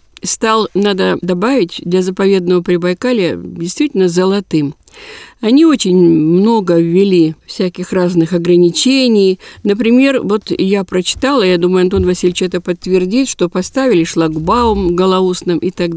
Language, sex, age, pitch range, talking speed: Russian, female, 50-69, 185-255 Hz, 115 wpm